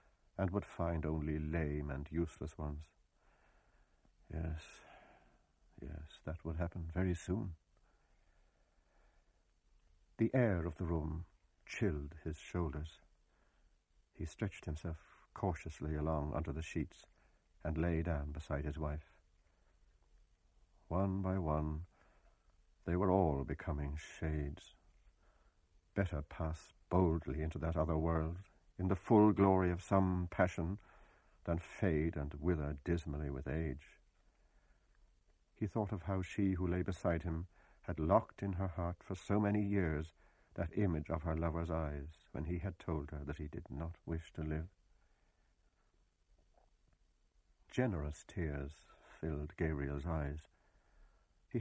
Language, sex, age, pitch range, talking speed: English, male, 60-79, 75-90 Hz, 125 wpm